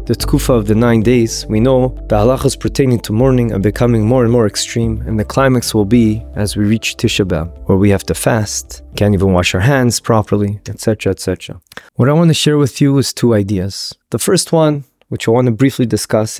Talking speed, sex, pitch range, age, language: 225 wpm, male, 105-135 Hz, 20-39, English